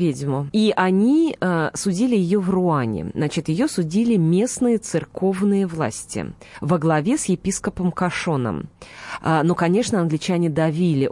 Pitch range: 160-210 Hz